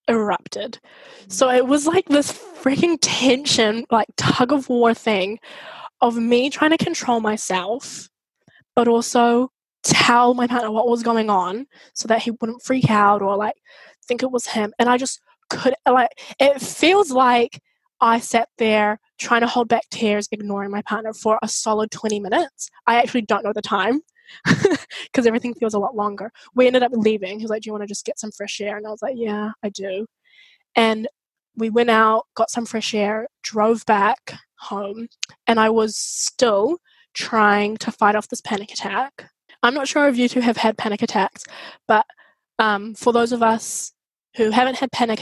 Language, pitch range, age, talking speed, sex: English, 215-250 Hz, 10-29, 185 wpm, female